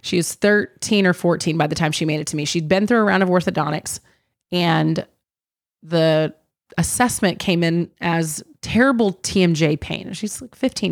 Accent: American